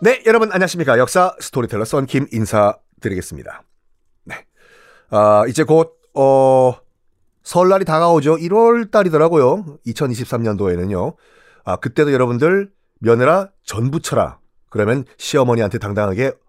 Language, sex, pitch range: Korean, male, 120-200 Hz